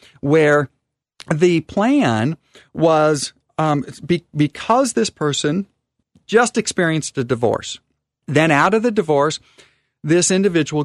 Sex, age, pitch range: male, 40-59, 135-180 Hz